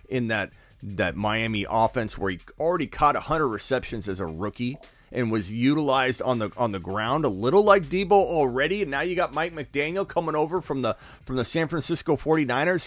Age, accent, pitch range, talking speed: 40-59, American, 125-175 Hz, 200 wpm